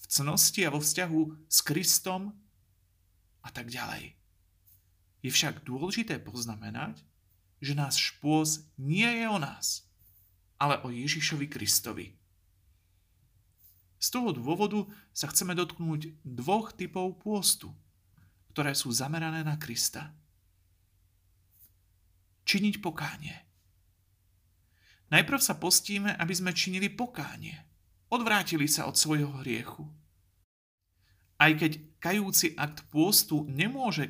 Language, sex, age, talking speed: Slovak, male, 40-59, 100 wpm